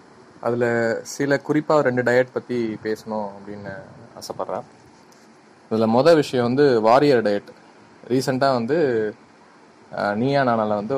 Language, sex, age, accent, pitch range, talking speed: Tamil, male, 20-39, native, 110-130 Hz, 105 wpm